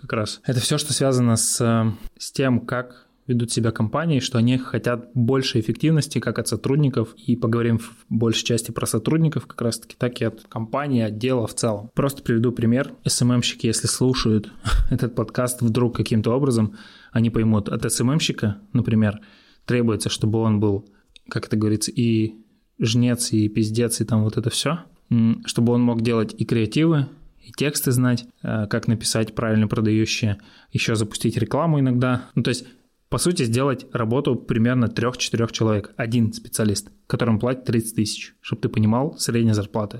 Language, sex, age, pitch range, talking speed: Russian, male, 20-39, 110-130 Hz, 165 wpm